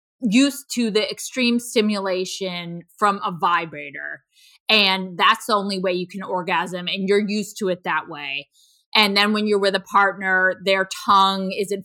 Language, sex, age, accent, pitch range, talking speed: English, female, 20-39, American, 180-215 Hz, 165 wpm